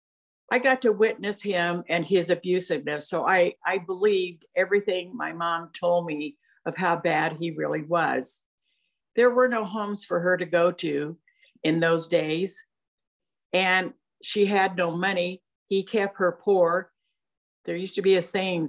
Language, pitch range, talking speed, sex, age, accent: English, 170-200 Hz, 160 wpm, female, 50-69, American